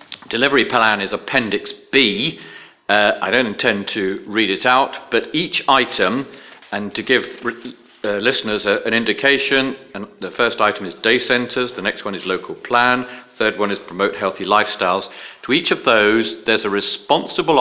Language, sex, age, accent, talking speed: English, male, 40-59, British, 175 wpm